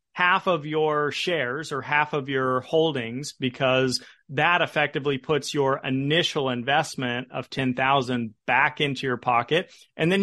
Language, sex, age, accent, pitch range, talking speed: English, male, 40-59, American, 135-165 Hz, 140 wpm